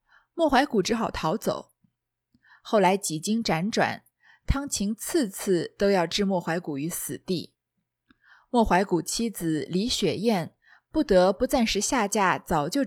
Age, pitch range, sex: 20-39, 185-245 Hz, female